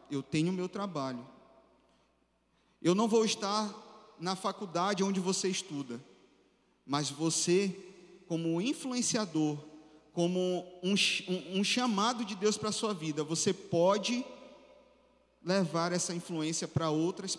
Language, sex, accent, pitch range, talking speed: Portuguese, male, Brazilian, 170-210 Hz, 125 wpm